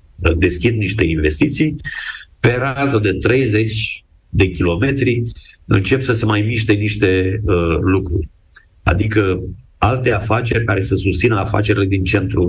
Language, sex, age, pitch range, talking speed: Romanian, male, 50-69, 85-110 Hz, 125 wpm